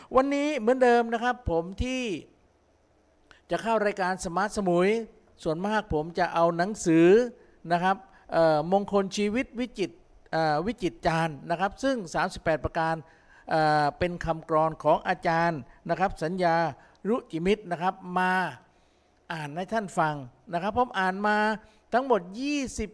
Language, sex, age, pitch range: Thai, male, 50-69, 165-210 Hz